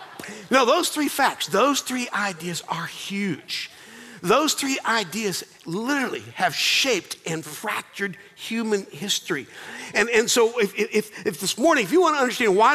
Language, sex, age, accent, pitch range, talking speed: English, male, 50-69, American, 175-225 Hz, 155 wpm